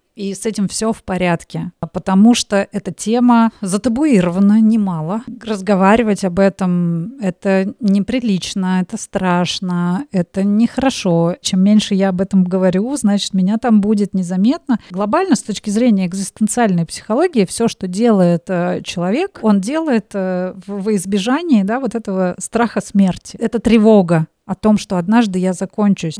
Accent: native